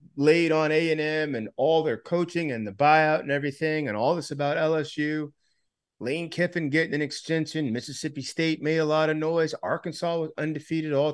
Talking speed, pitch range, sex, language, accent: 180 wpm, 130-155 Hz, male, English, American